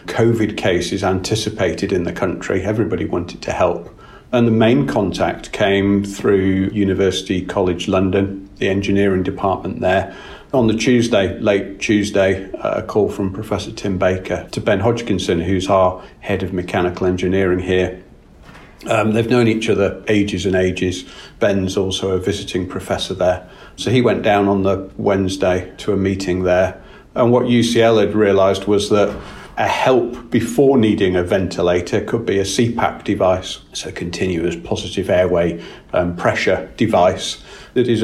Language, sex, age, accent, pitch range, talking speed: English, male, 40-59, British, 95-110 Hz, 150 wpm